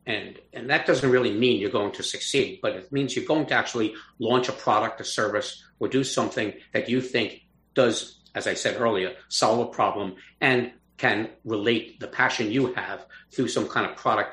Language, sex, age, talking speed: English, male, 50-69, 200 wpm